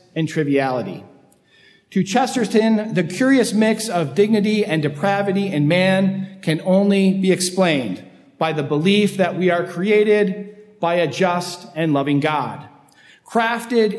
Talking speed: 130 wpm